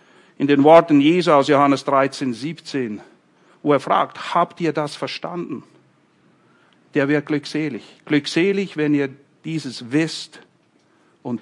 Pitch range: 140-195 Hz